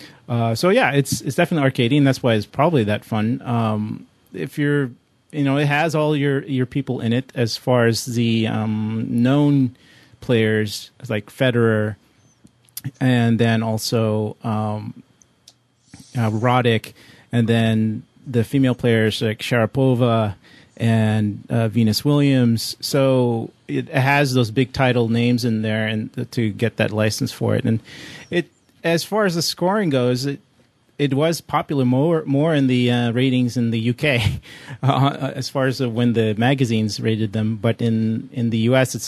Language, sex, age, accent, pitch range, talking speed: English, male, 30-49, American, 115-135 Hz, 165 wpm